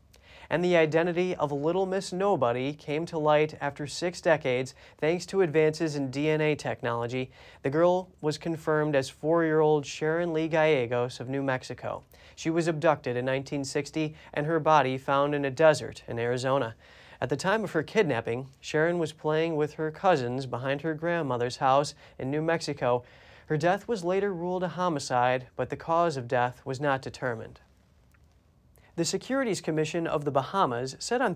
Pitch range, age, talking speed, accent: 135-170 Hz, 30-49, 165 wpm, American